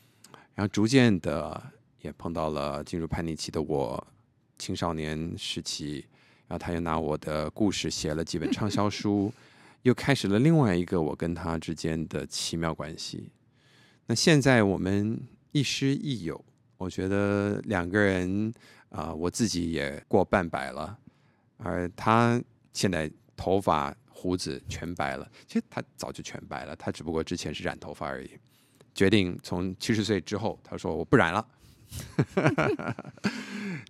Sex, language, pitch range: male, Chinese, 85-120 Hz